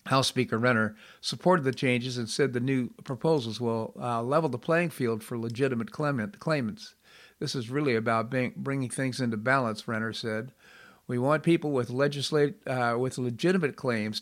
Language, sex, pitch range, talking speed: English, male, 115-135 Hz, 165 wpm